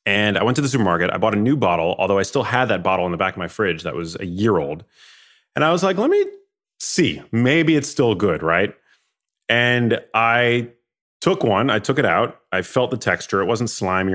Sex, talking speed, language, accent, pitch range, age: male, 235 wpm, English, American, 90-115 Hz, 30-49